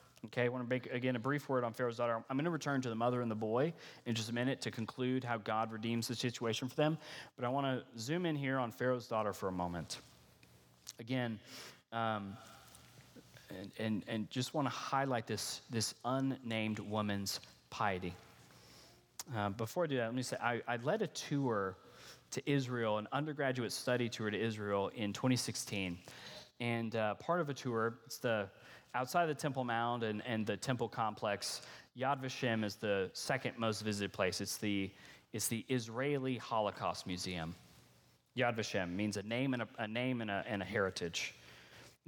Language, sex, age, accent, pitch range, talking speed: English, male, 30-49, American, 105-130 Hz, 190 wpm